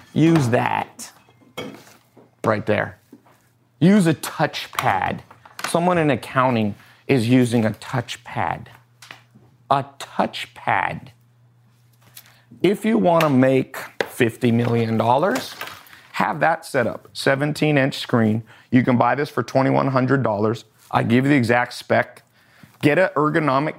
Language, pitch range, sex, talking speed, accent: English, 115-145 Hz, male, 120 wpm, American